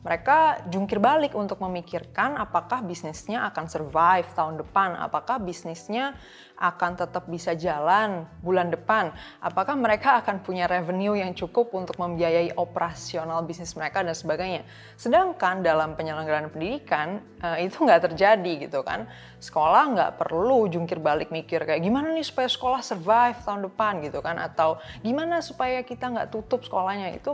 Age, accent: 20-39, native